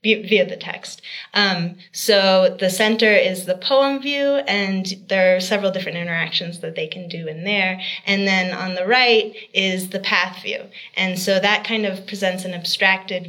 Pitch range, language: 180-215 Hz, English